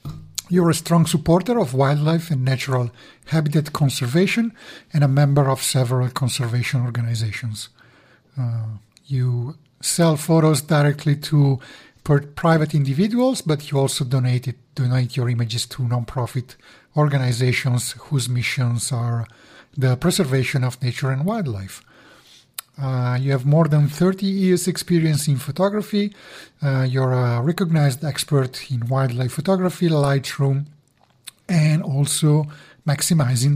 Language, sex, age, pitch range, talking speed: English, male, 50-69, 130-160 Hz, 120 wpm